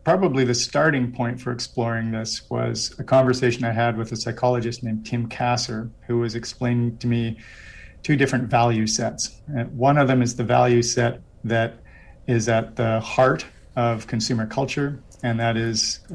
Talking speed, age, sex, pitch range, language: 165 wpm, 40-59, male, 110-125 Hz, English